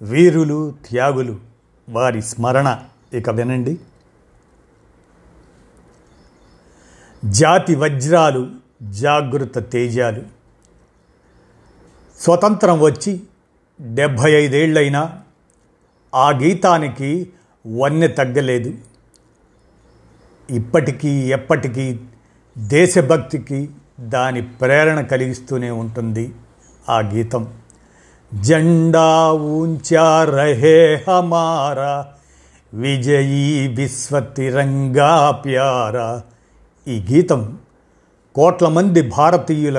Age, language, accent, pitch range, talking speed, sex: 50-69, Telugu, native, 120-155 Hz, 55 wpm, male